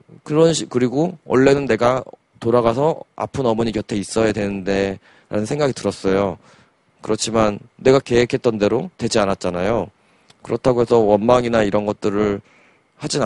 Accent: native